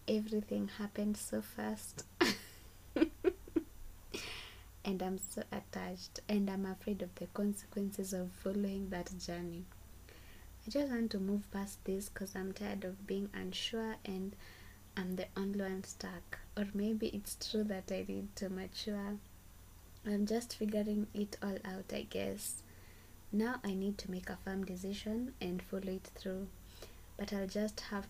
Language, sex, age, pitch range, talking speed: English, female, 20-39, 175-210 Hz, 150 wpm